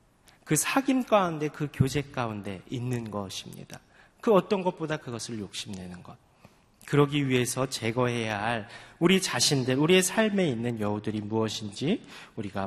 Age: 30-49